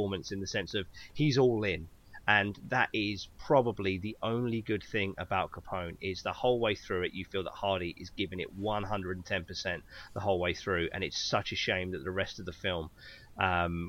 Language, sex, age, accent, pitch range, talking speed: English, male, 30-49, British, 95-110 Hz, 205 wpm